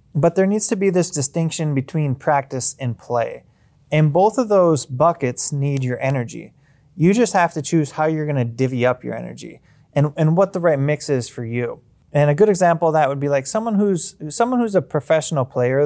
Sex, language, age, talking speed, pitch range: male, English, 20-39, 210 wpm, 135-165 Hz